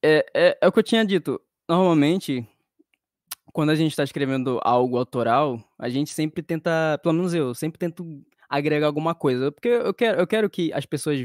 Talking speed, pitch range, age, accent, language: 185 wpm, 125-165 Hz, 20-39, Brazilian, Portuguese